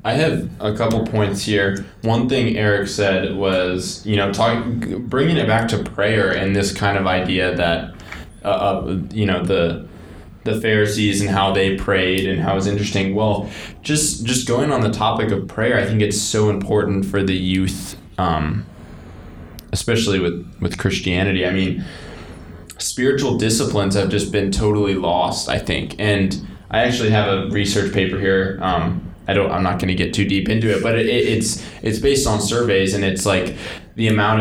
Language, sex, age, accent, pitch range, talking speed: English, male, 20-39, American, 95-110 Hz, 180 wpm